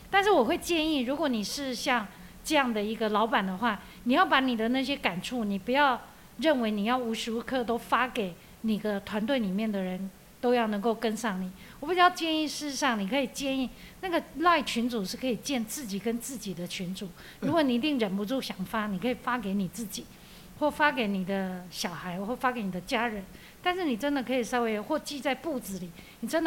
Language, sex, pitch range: English, female, 205-275 Hz